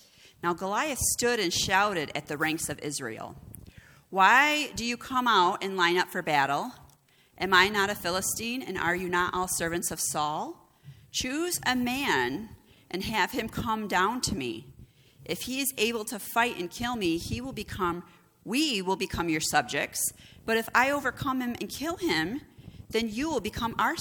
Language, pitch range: English, 145-215 Hz